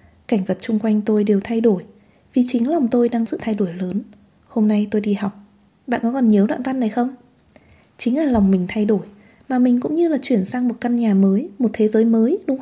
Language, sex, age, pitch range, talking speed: Vietnamese, female, 20-39, 205-265 Hz, 245 wpm